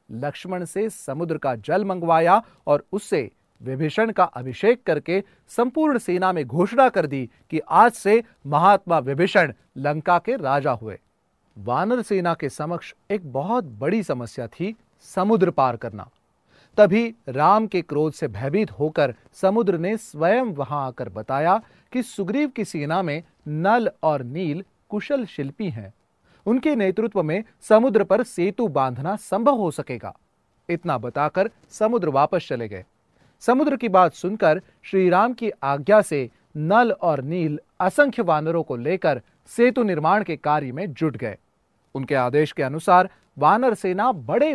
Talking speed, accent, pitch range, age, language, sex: 145 wpm, native, 145-215 Hz, 40-59, Hindi, male